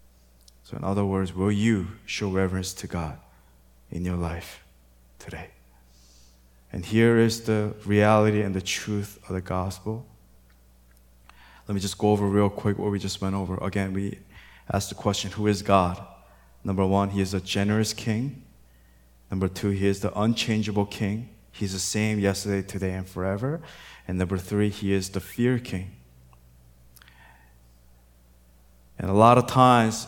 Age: 20-39